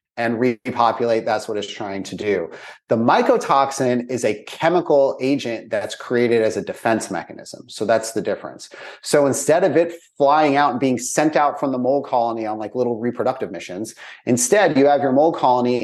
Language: English